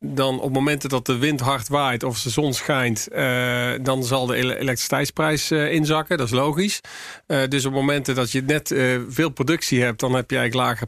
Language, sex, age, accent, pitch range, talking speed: English, male, 40-59, Dutch, 125-145 Hz, 210 wpm